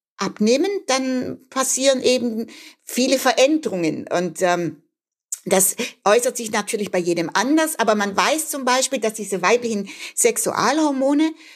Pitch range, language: 200-270 Hz, German